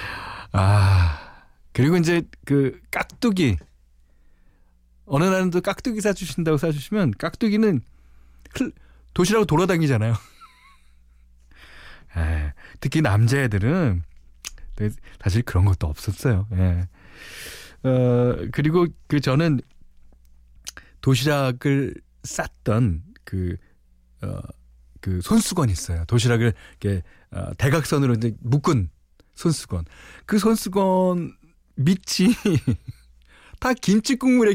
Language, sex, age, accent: Korean, male, 40-59, native